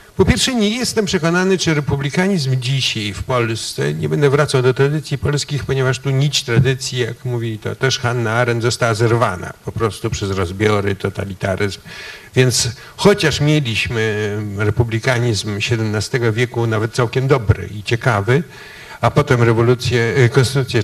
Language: Polish